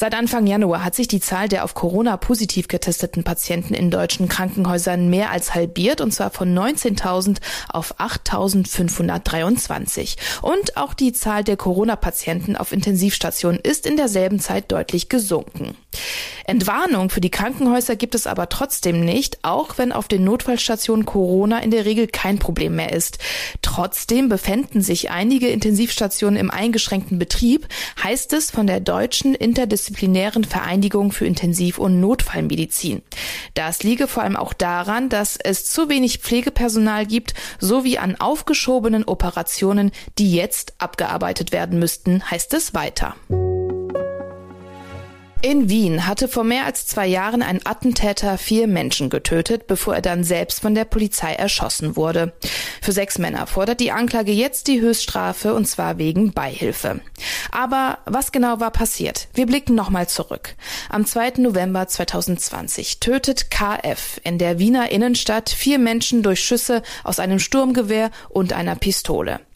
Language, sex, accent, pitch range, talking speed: German, female, German, 185-240 Hz, 145 wpm